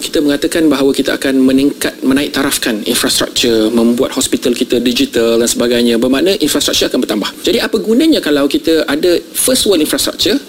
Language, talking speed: Malay, 160 wpm